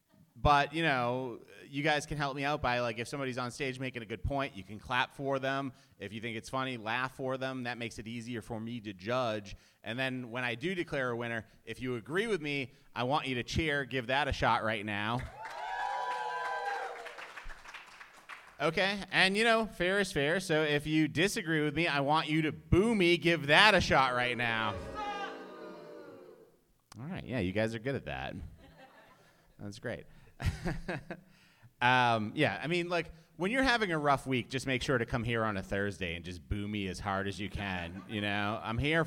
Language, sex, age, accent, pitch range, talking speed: English, male, 30-49, American, 115-155 Hz, 205 wpm